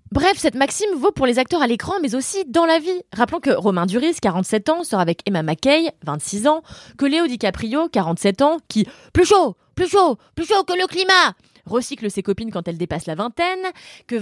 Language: French